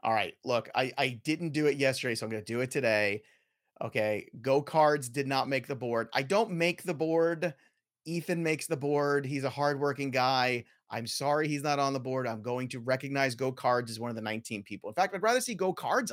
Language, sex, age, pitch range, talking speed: English, male, 30-49, 135-190 Hz, 235 wpm